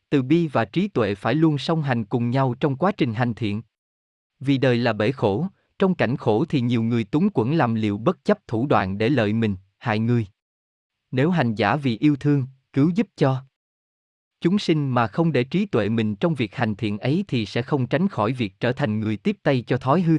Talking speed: 225 wpm